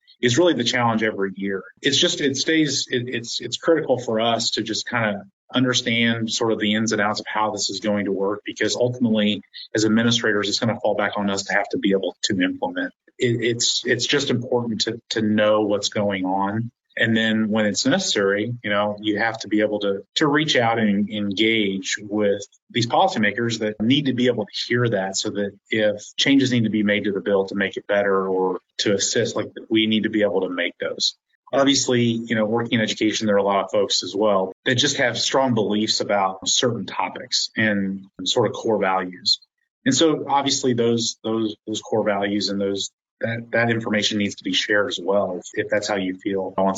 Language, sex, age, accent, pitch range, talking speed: English, male, 30-49, American, 100-115 Hz, 220 wpm